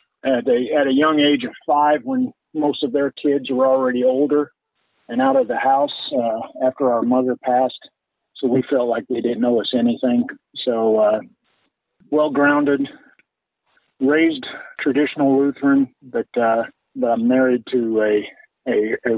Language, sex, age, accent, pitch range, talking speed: English, male, 50-69, American, 120-145 Hz, 150 wpm